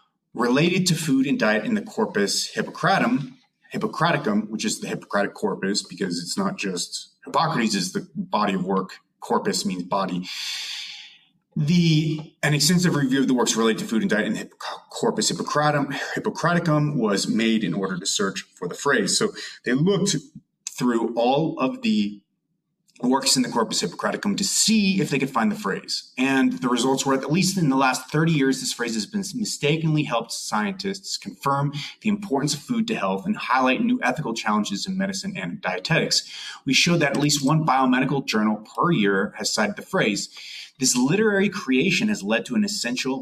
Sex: male